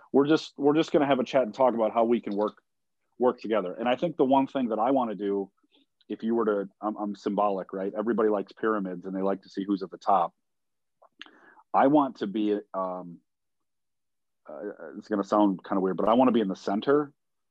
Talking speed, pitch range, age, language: 235 wpm, 95-115 Hz, 40-59, English